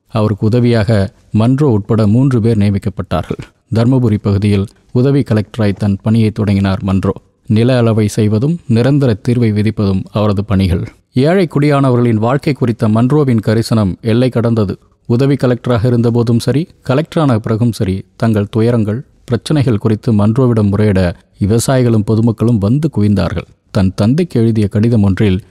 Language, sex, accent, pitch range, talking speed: Tamil, male, native, 105-130 Hz, 105 wpm